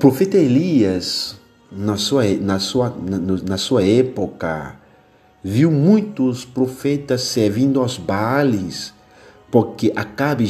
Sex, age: male, 50-69